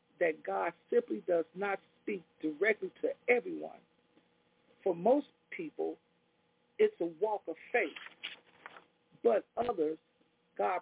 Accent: American